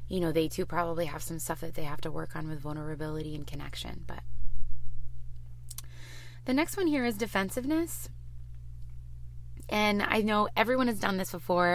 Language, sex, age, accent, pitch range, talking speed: English, female, 20-39, American, 120-200 Hz, 170 wpm